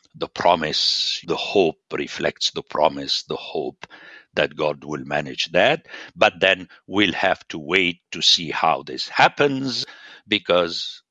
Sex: male